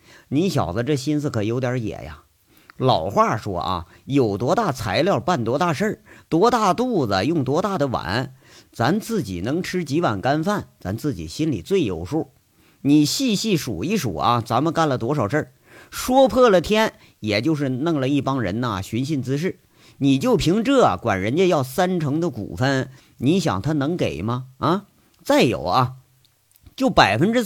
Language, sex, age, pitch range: Chinese, male, 50-69, 115-165 Hz